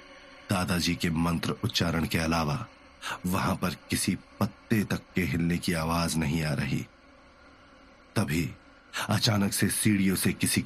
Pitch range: 90-120 Hz